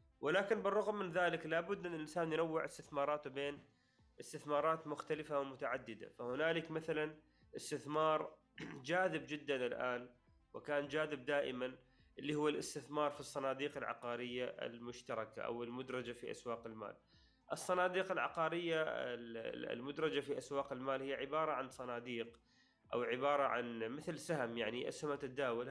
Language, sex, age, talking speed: Arabic, male, 30-49, 125 wpm